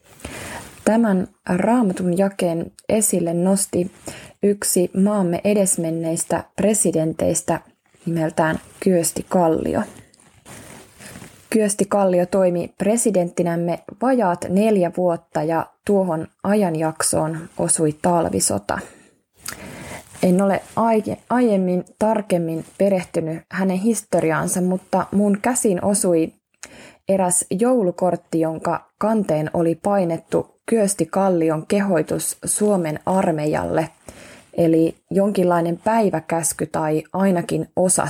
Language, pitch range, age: Finnish, 165-200 Hz, 20-39